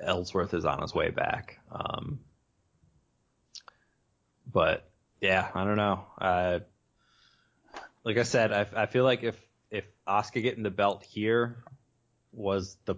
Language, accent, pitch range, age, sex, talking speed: English, American, 95-115 Hz, 20-39, male, 135 wpm